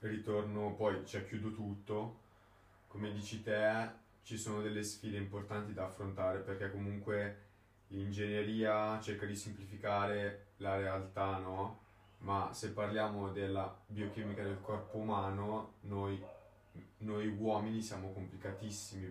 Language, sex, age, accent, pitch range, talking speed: Italian, male, 20-39, native, 100-110 Hz, 120 wpm